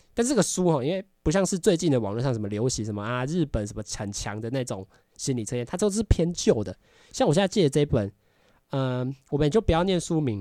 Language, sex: Chinese, male